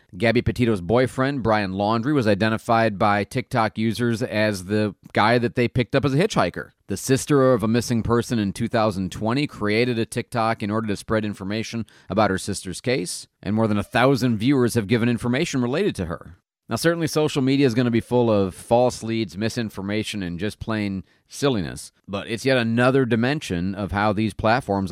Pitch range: 105-135 Hz